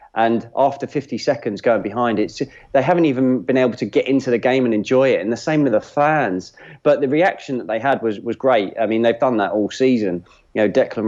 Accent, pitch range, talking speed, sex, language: British, 105-125 Hz, 245 wpm, male, English